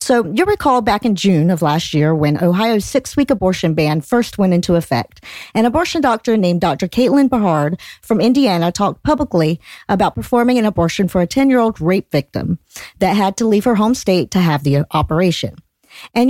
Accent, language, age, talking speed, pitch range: American, English, 50-69, 185 wpm, 175-250 Hz